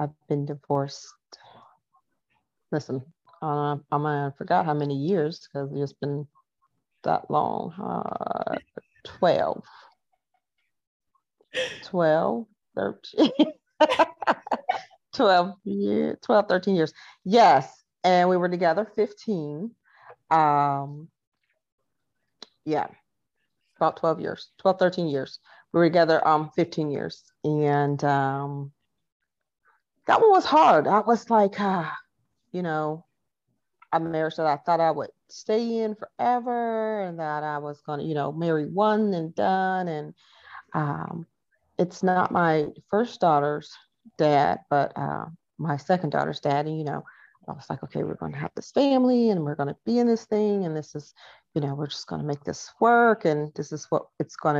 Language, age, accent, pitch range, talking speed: English, 40-59, American, 150-210 Hz, 145 wpm